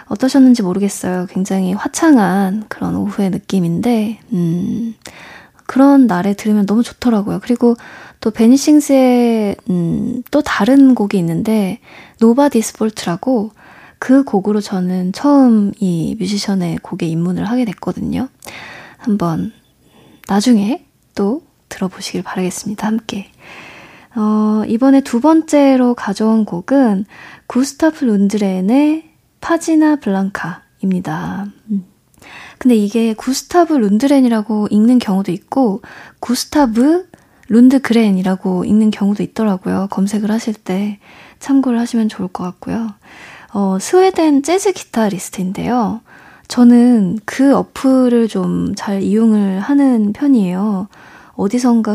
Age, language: 20-39, Korean